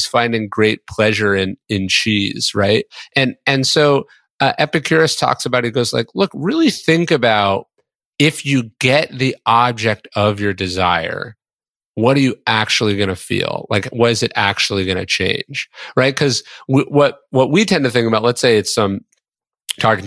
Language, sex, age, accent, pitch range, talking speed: English, male, 30-49, American, 100-130 Hz, 175 wpm